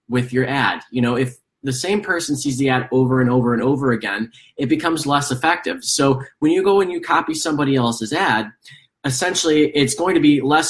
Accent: American